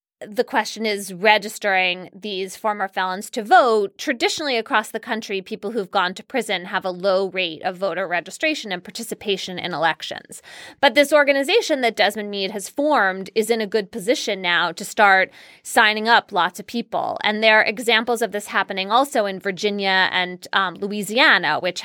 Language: English